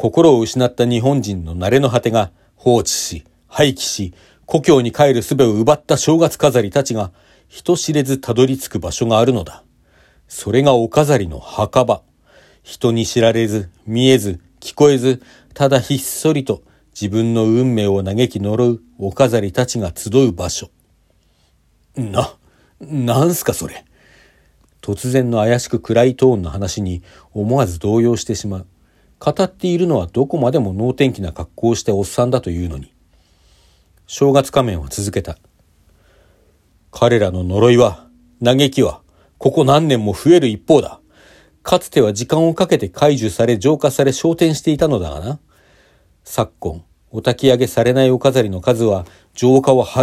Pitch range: 95-135 Hz